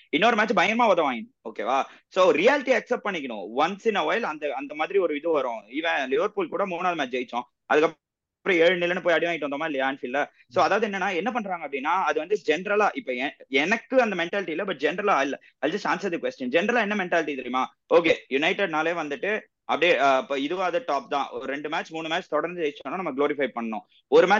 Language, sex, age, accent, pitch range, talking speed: Tamil, male, 30-49, native, 155-230 Hz, 175 wpm